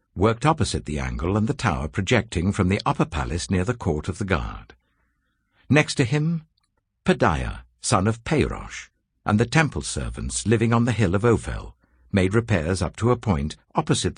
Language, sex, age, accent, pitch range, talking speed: English, male, 60-79, British, 85-125 Hz, 180 wpm